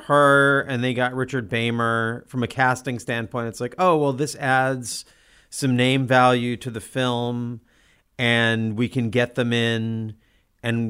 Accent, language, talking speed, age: American, English, 160 wpm, 40-59